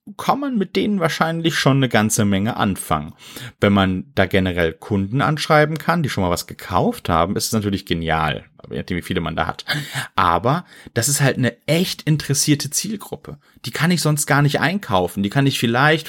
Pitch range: 95-145 Hz